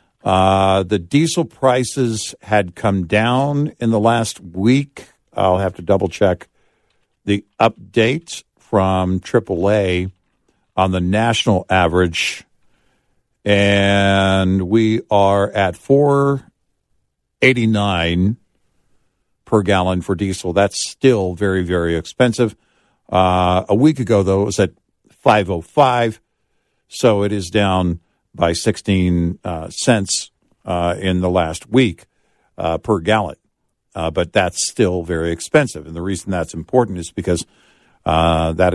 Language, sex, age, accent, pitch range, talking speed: English, male, 50-69, American, 90-110 Hz, 120 wpm